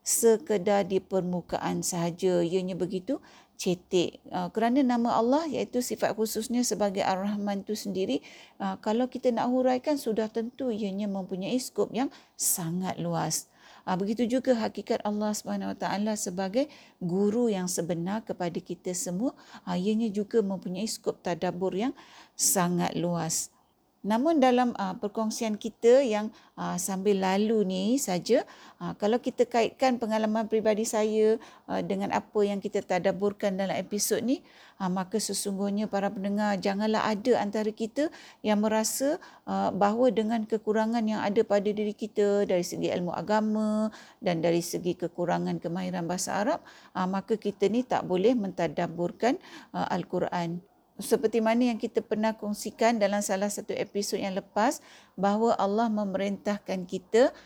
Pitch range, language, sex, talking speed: 185-225 Hz, Malay, female, 130 wpm